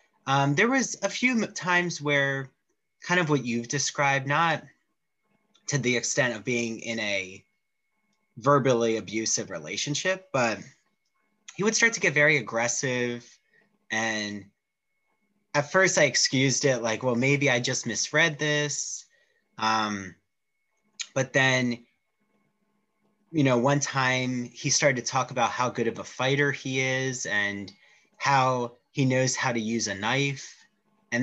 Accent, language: American, English